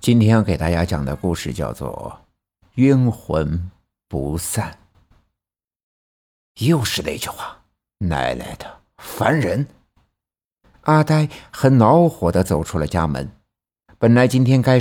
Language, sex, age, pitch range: Chinese, male, 60-79, 90-130 Hz